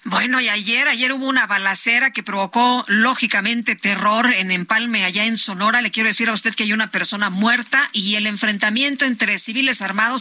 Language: Spanish